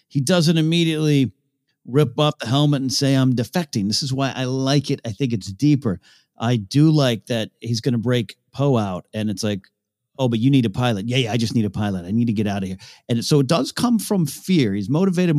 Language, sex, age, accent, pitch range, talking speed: English, male, 50-69, American, 115-155 Hz, 245 wpm